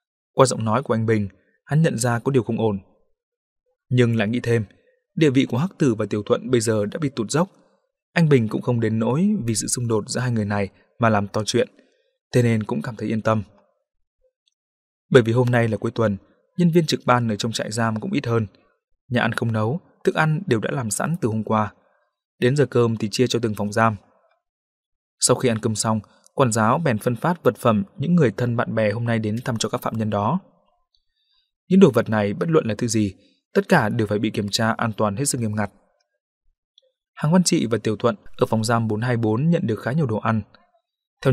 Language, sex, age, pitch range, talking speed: Vietnamese, male, 20-39, 110-155 Hz, 235 wpm